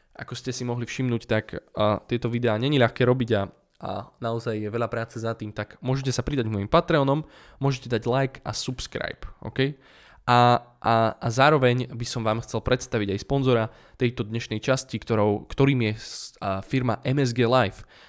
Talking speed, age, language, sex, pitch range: 180 wpm, 10-29, Slovak, male, 115-140 Hz